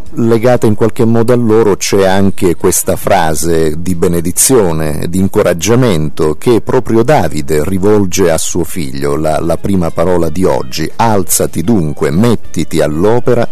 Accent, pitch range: native, 85-115 Hz